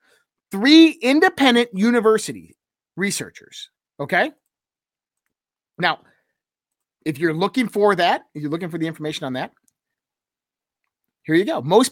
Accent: American